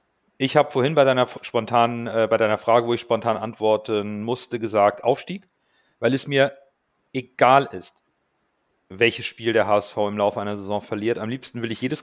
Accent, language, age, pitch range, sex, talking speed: German, German, 40-59, 120-140 Hz, male, 180 wpm